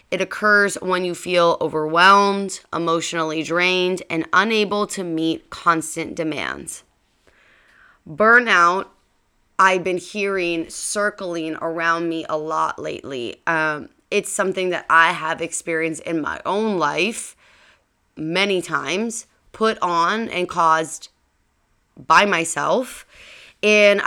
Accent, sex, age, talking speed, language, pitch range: American, female, 20-39, 110 wpm, English, 160-195 Hz